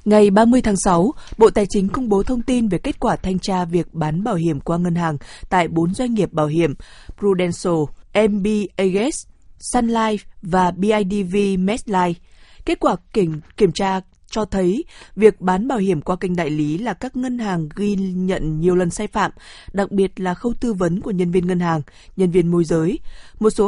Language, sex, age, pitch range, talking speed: Vietnamese, female, 20-39, 170-215 Hz, 205 wpm